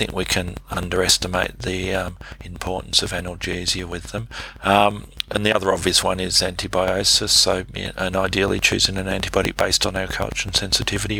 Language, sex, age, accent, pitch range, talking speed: English, male, 40-59, Australian, 90-95 Hz, 165 wpm